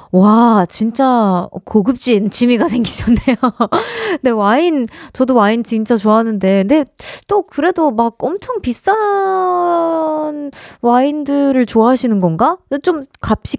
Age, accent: 20-39, native